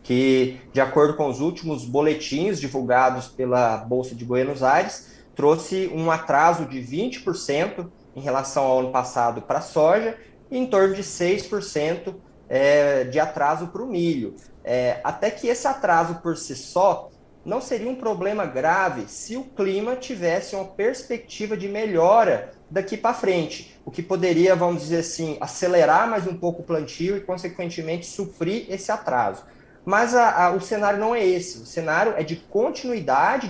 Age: 20-39